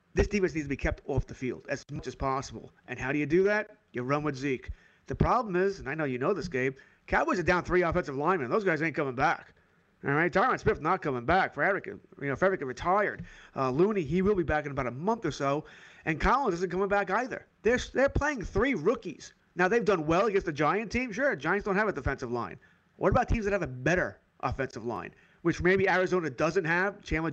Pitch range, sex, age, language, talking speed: 140-190 Hz, male, 30-49, English, 240 wpm